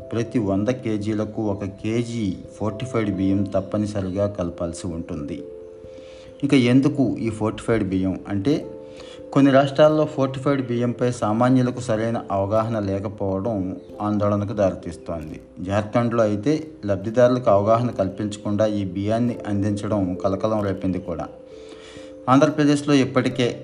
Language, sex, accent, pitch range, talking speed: Telugu, male, native, 95-120 Hz, 100 wpm